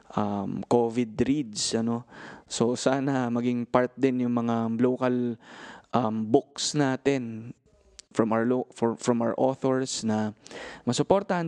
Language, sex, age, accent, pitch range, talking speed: Filipino, male, 20-39, native, 115-135 Hz, 125 wpm